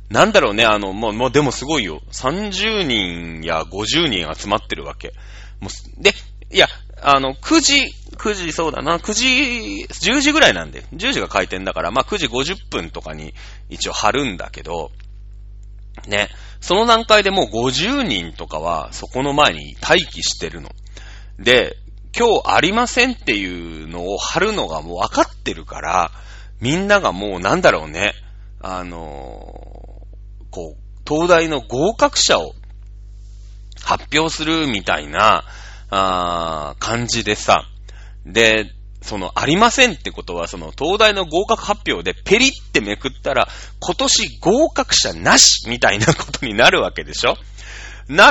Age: 30-49